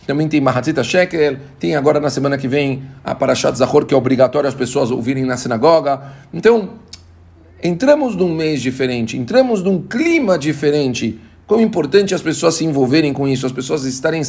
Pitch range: 135-165 Hz